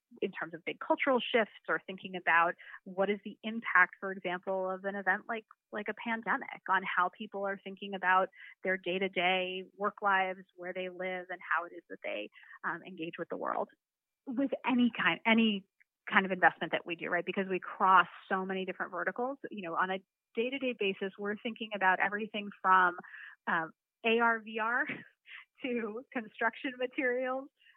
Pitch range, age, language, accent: 185-230 Hz, 30-49, English, American